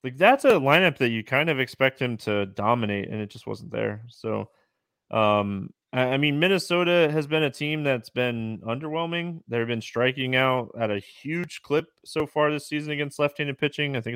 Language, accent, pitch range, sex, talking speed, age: English, American, 115-145 Hz, male, 205 wpm, 20-39